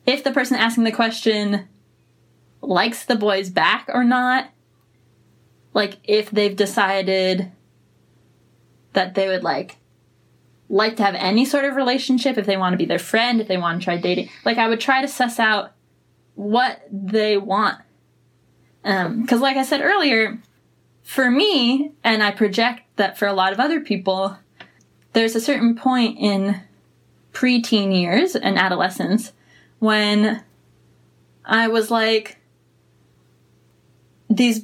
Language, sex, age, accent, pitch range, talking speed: English, female, 10-29, American, 190-230 Hz, 140 wpm